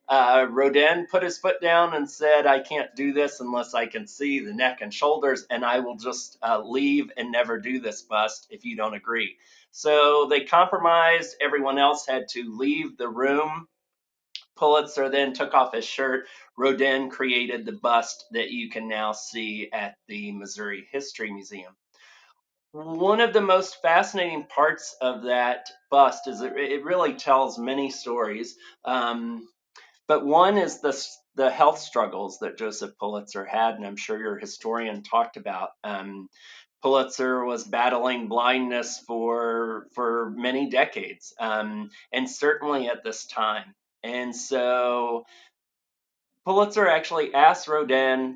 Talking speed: 150 wpm